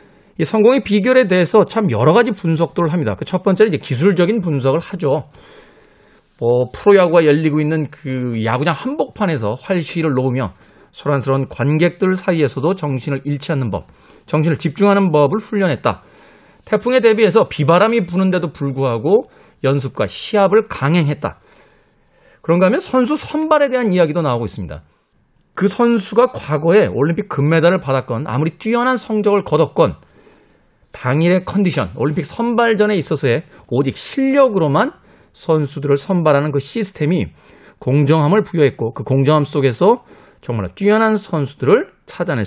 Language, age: Korean, 40-59